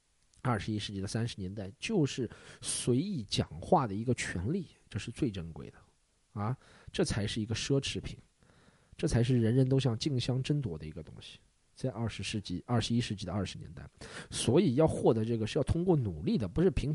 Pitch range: 105-145 Hz